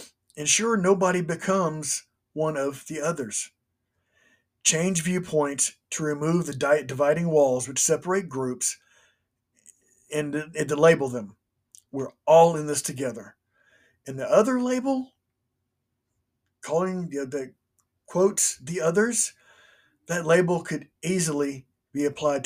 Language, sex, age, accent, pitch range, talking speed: English, male, 50-69, American, 120-165 Hz, 120 wpm